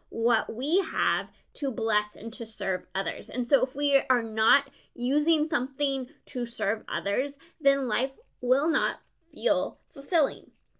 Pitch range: 235-295 Hz